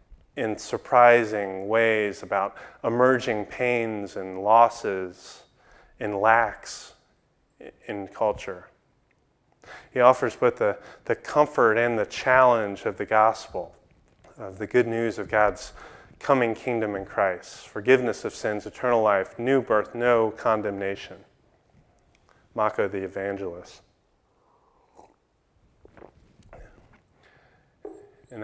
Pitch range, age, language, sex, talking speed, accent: 100-125 Hz, 30-49, English, male, 100 wpm, American